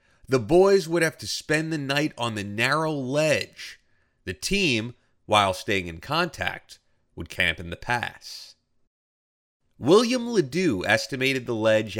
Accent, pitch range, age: American, 105-165 Hz, 30-49